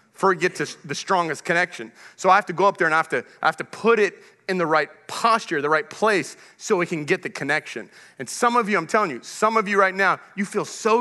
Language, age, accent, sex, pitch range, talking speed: English, 30-49, American, male, 180-255 Hz, 265 wpm